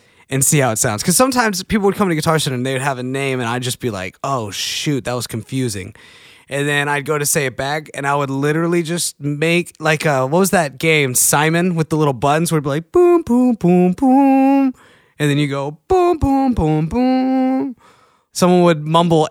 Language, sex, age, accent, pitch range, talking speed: English, male, 20-39, American, 115-175 Hz, 225 wpm